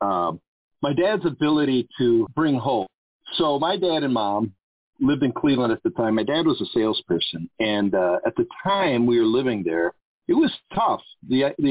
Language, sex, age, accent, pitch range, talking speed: English, male, 40-59, American, 115-185 Hz, 190 wpm